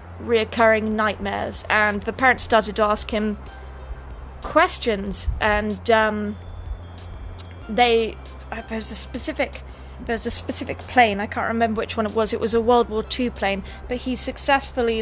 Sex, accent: female, British